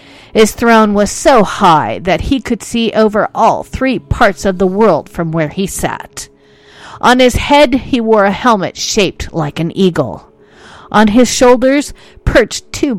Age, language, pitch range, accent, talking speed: 50-69, English, 165-240 Hz, American, 165 wpm